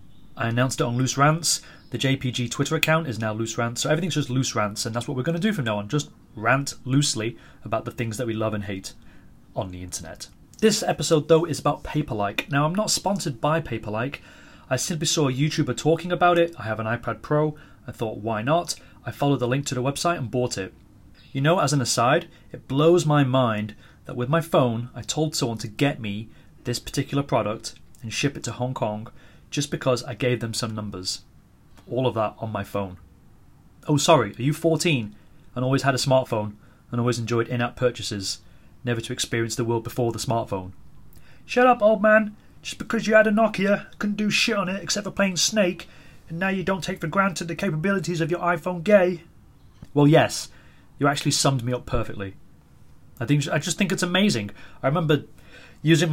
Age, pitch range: 30-49, 115-160 Hz